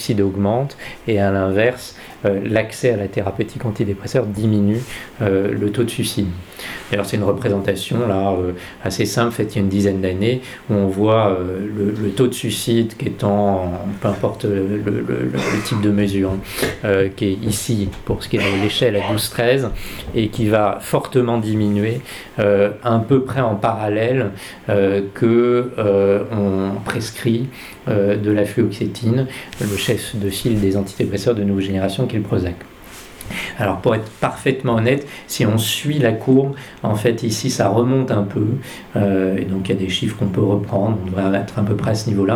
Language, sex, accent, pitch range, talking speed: French, male, French, 100-120 Hz, 180 wpm